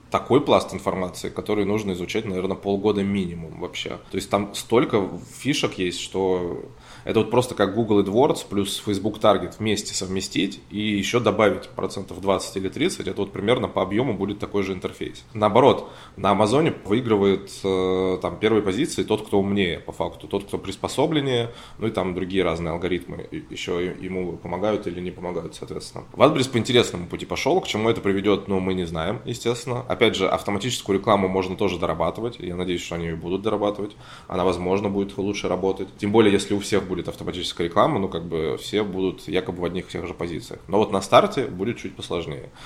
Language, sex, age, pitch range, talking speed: Russian, male, 20-39, 90-105 Hz, 185 wpm